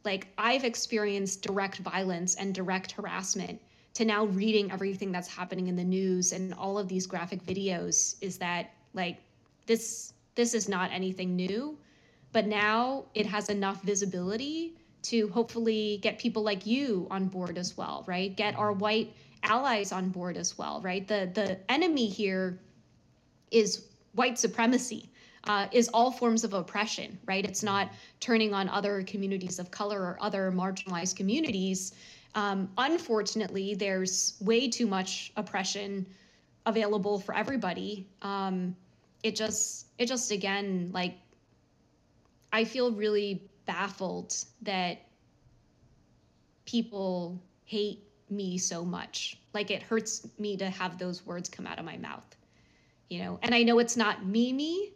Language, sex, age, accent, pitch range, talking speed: English, female, 20-39, American, 185-220 Hz, 145 wpm